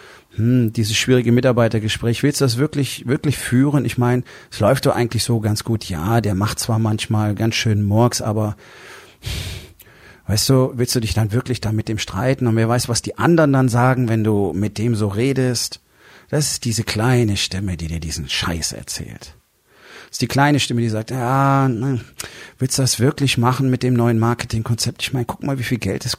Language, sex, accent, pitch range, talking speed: German, male, German, 105-125 Hz, 200 wpm